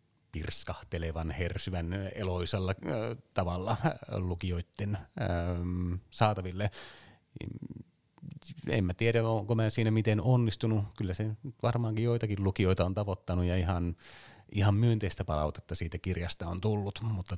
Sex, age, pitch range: male, 30-49, 90-105 Hz